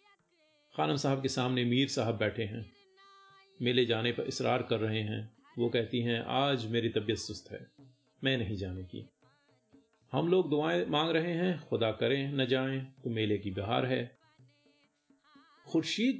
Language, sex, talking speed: Hindi, male, 160 wpm